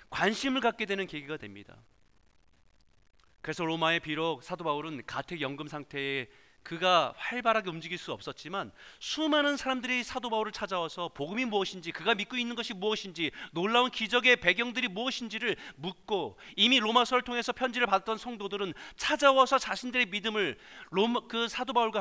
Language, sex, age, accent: Korean, male, 40-59, native